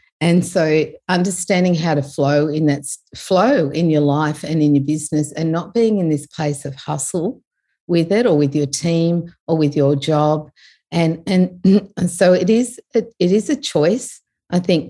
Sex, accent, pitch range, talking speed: female, Australian, 145-170 Hz, 190 wpm